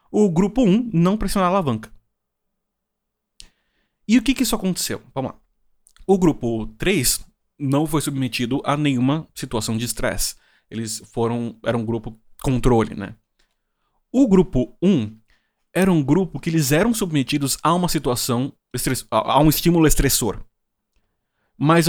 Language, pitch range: Portuguese, 120-165 Hz